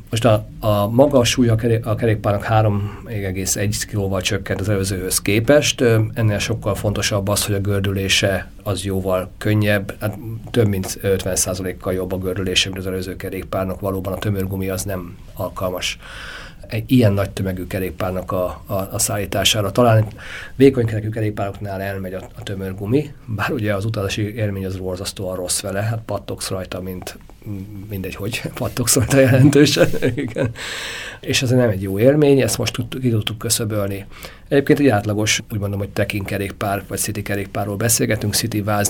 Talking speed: 150 wpm